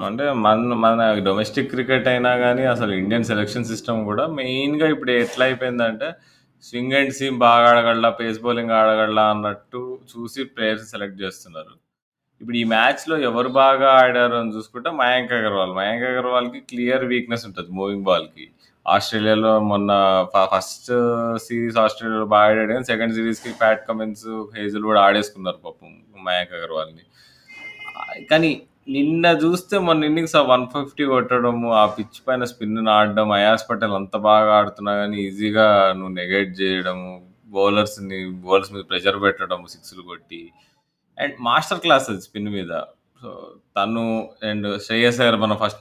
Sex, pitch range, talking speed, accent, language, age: male, 105-130 Hz, 140 wpm, native, Telugu, 20-39